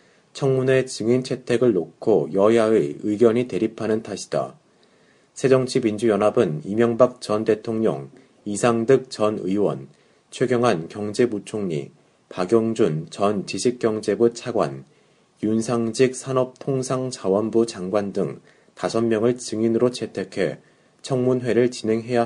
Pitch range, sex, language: 105-120 Hz, male, Korean